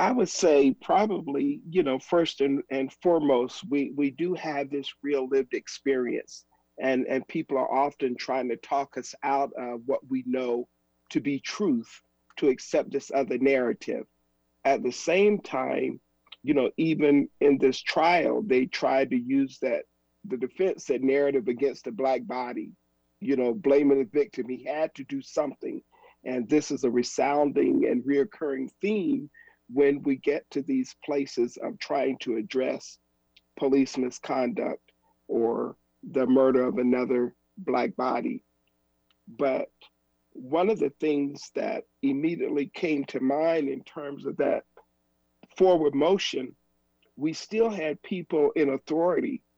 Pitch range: 120-155 Hz